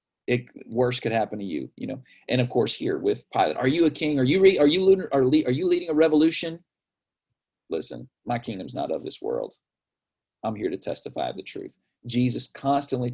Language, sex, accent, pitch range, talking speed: English, male, American, 115-145 Hz, 215 wpm